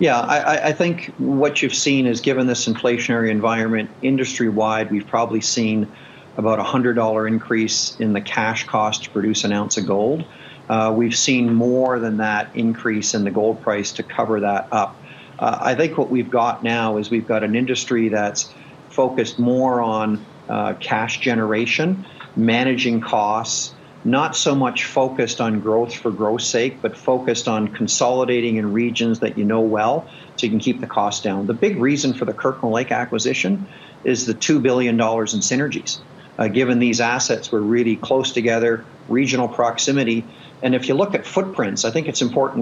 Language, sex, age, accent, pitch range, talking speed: English, male, 50-69, American, 110-130 Hz, 180 wpm